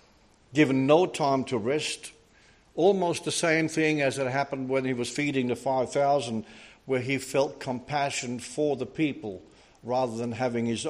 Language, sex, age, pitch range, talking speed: English, male, 60-79, 110-135 Hz, 160 wpm